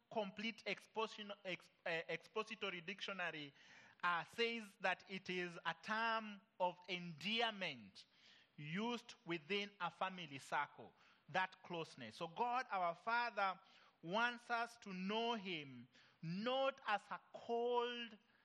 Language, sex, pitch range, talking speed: English, male, 170-225 Hz, 110 wpm